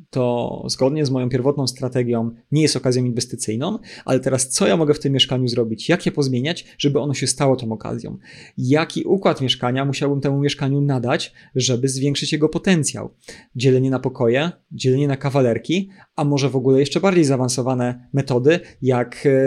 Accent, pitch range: native, 125-150 Hz